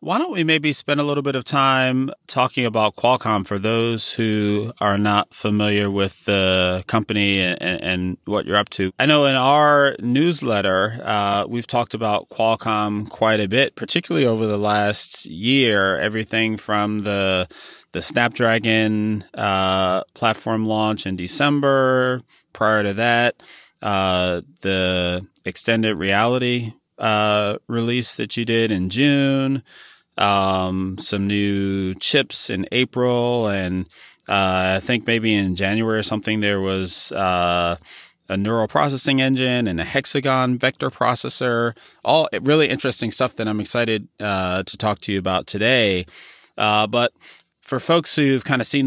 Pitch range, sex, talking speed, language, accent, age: 100-125 Hz, male, 145 wpm, English, American, 30-49